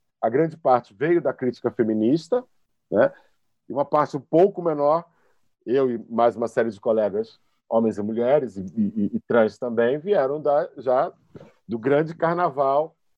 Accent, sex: Brazilian, male